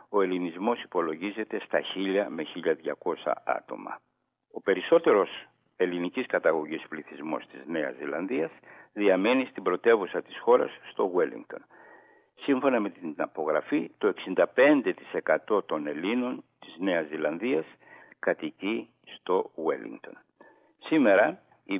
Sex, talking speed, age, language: male, 105 wpm, 60-79, Greek